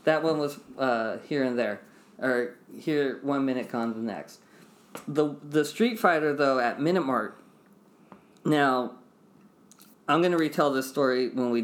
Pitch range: 115-135 Hz